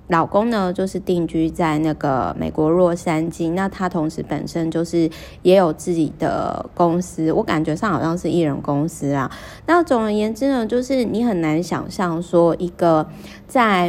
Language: Chinese